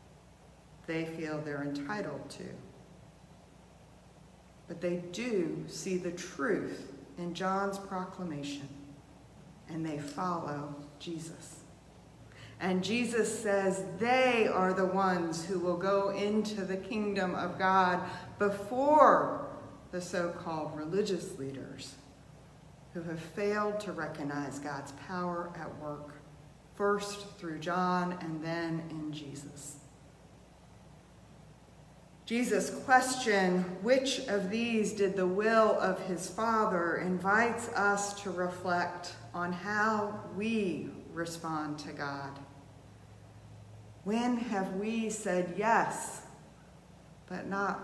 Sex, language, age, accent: female, English, 40-59, American